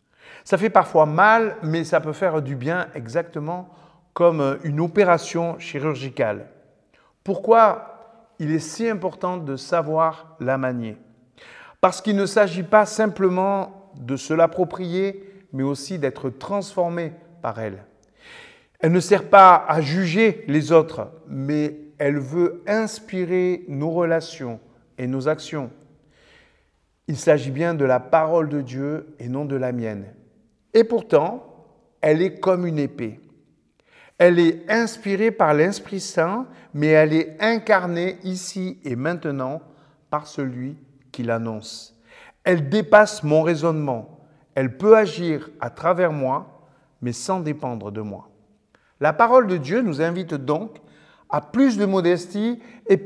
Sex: male